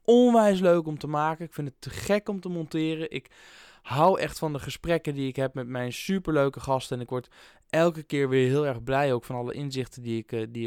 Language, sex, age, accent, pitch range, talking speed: Dutch, male, 20-39, Dutch, 110-135 Hz, 235 wpm